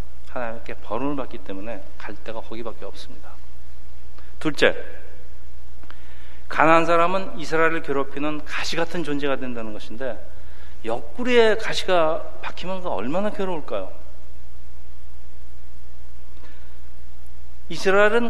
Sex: male